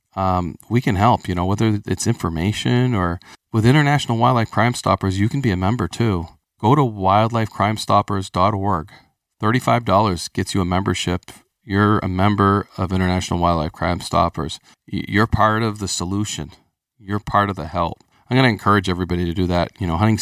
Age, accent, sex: 40-59, American, male